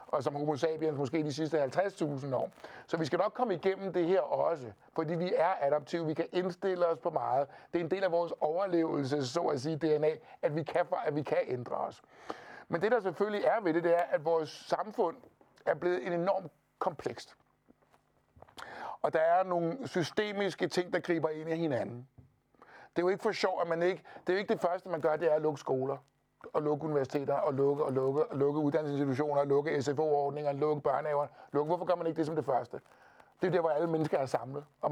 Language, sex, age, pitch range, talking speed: Danish, male, 60-79, 150-180 Hz, 215 wpm